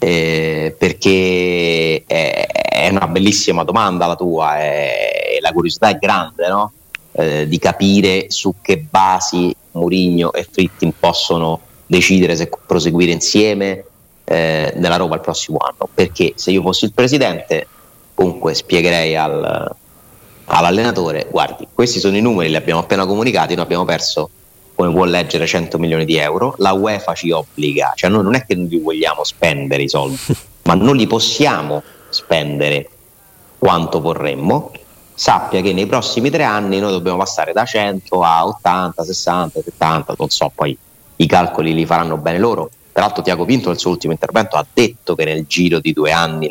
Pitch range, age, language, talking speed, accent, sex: 80-95 Hz, 30-49, Italian, 160 wpm, native, male